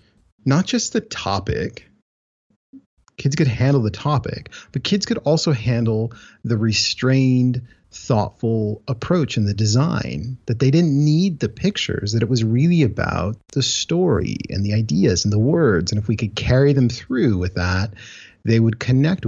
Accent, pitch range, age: American, 105-150 Hz, 30-49